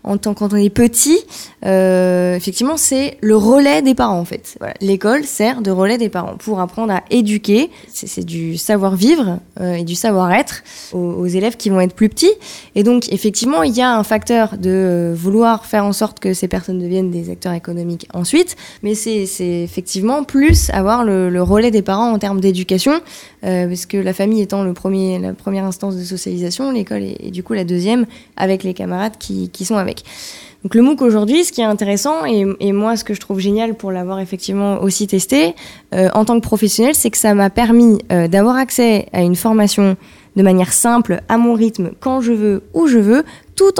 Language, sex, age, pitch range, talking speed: French, female, 20-39, 185-230 Hz, 210 wpm